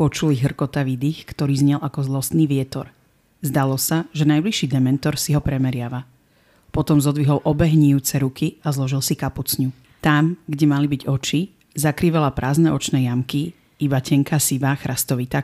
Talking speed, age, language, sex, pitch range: 145 wpm, 40-59, Slovak, female, 130-155 Hz